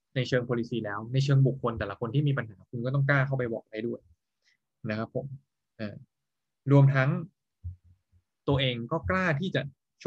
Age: 20-39